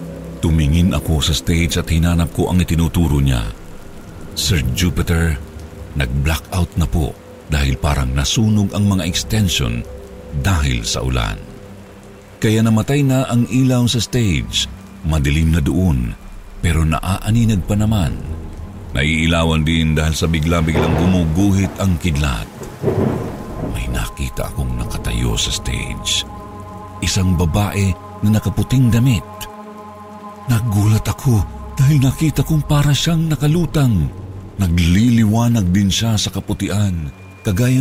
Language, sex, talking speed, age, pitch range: Filipino, male, 115 wpm, 50-69, 80-110 Hz